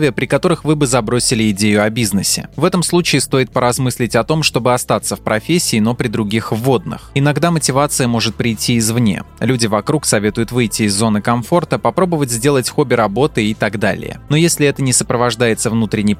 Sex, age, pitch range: male, 20-39, 110-145 Hz